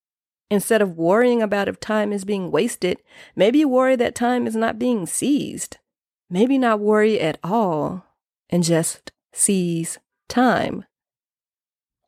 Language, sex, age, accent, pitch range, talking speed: English, female, 30-49, American, 170-215 Hz, 130 wpm